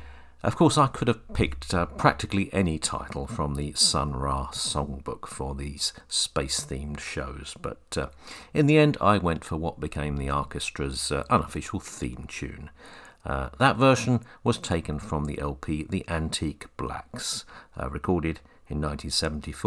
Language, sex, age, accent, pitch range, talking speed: English, male, 50-69, British, 70-100 Hz, 150 wpm